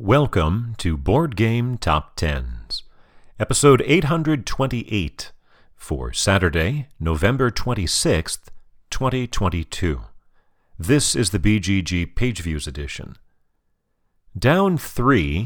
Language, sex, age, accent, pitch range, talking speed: English, male, 40-59, American, 85-125 Hz, 80 wpm